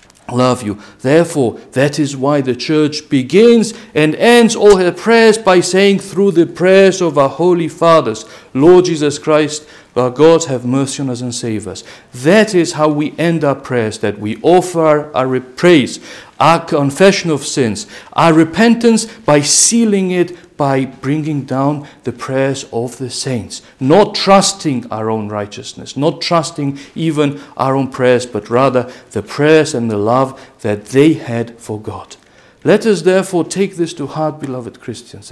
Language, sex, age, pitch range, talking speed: English, male, 50-69, 125-170 Hz, 165 wpm